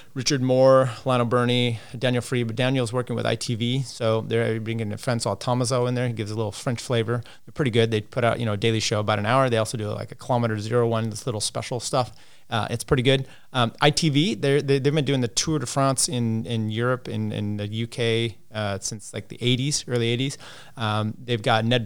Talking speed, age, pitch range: 235 wpm, 30-49, 115-130 Hz